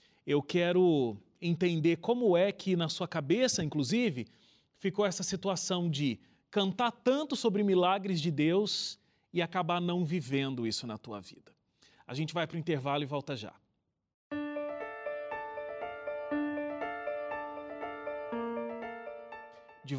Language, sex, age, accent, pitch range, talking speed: Portuguese, male, 30-49, Brazilian, 145-195 Hz, 115 wpm